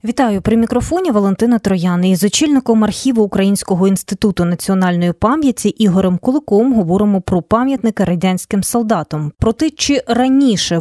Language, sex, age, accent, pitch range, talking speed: Ukrainian, female, 20-39, native, 185-245 Hz, 120 wpm